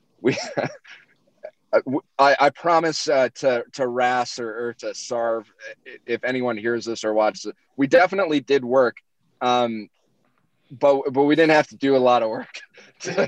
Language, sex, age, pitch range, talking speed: English, male, 20-39, 115-140 Hz, 165 wpm